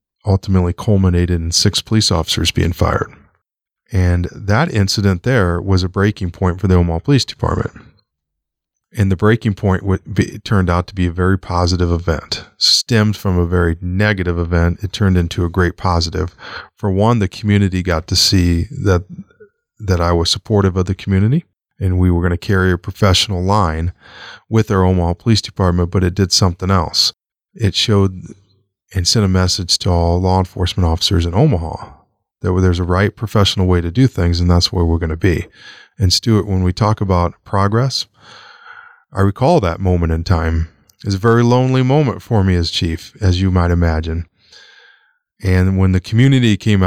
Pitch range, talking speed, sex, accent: 90-105 Hz, 180 wpm, male, American